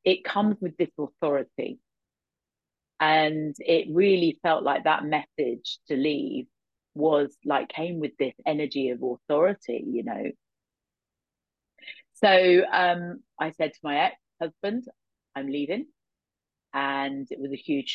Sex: female